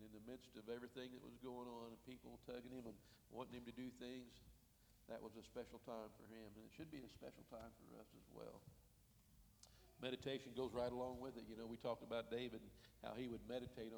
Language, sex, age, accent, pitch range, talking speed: English, male, 60-79, American, 110-125 Hz, 230 wpm